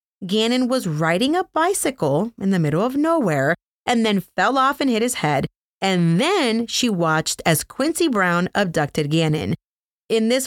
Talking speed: 165 wpm